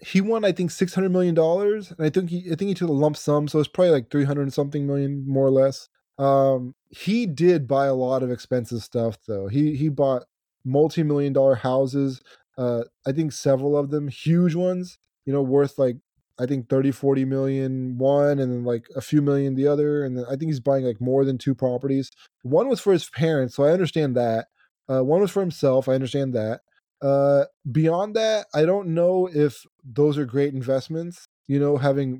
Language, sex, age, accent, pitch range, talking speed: English, male, 20-39, American, 130-160 Hz, 215 wpm